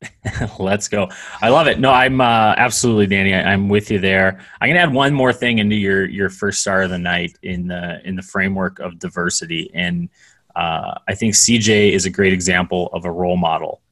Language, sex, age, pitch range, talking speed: English, male, 20-39, 85-95 Hz, 215 wpm